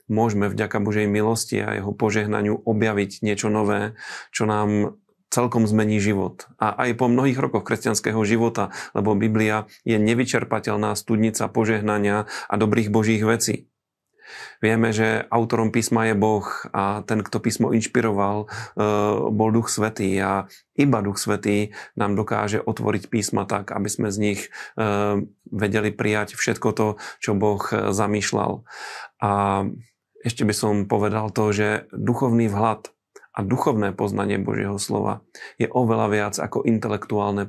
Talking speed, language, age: 135 wpm, Slovak, 30-49